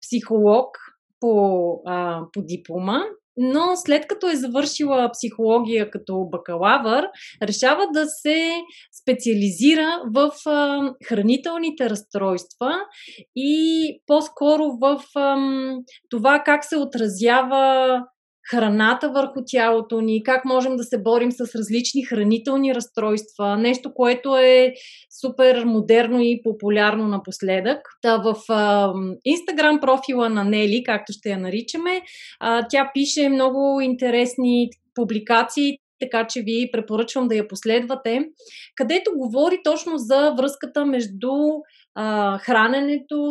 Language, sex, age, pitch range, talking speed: Bulgarian, female, 30-49, 225-285 Hz, 110 wpm